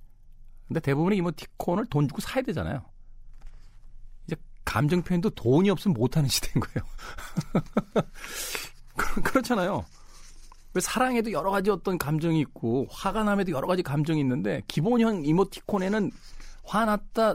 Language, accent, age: Korean, native, 40-59